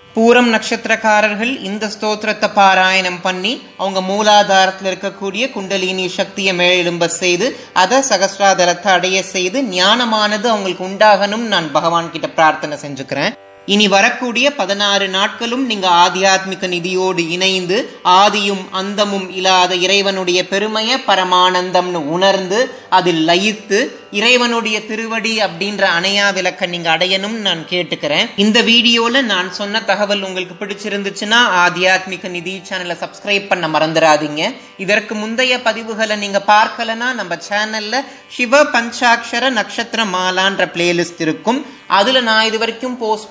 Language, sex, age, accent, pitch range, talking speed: Tamil, male, 20-39, native, 185-225 Hz, 85 wpm